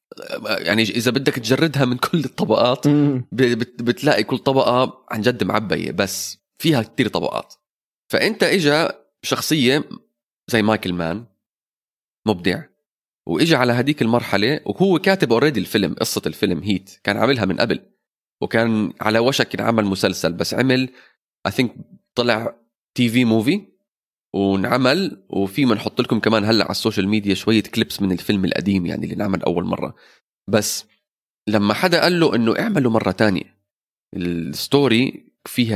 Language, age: Arabic, 30-49